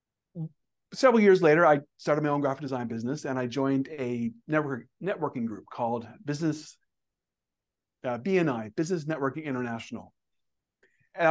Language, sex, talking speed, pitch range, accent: English, male, 135 wpm, 125-155 Hz, American